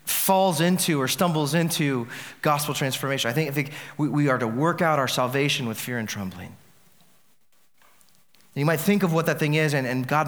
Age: 30-49